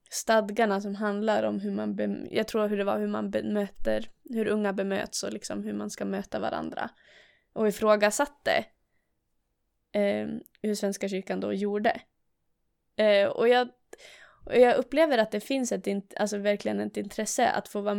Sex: female